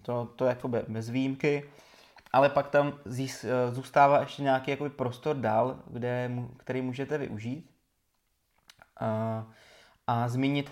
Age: 20-39